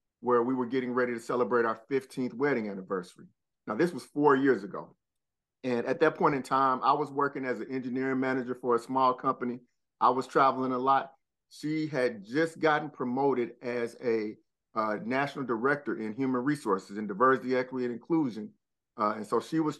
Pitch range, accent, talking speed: 120-135 Hz, American, 190 wpm